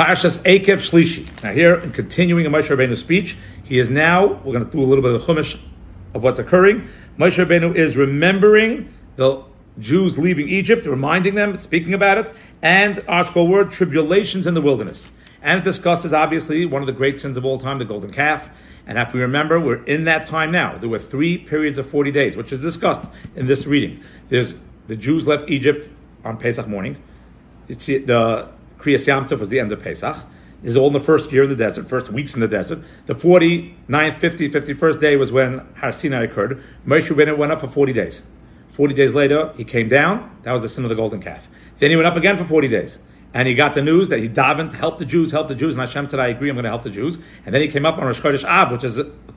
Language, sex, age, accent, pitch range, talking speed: English, male, 50-69, American, 130-165 Hz, 230 wpm